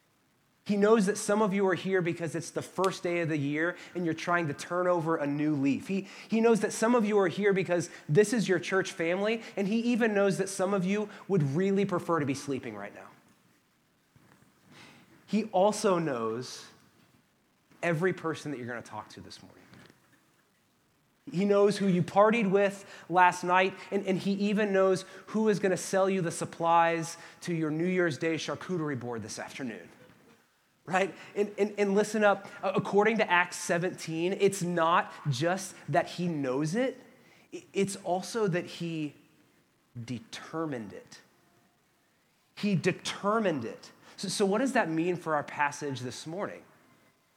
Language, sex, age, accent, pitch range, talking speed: English, male, 30-49, American, 155-200 Hz, 170 wpm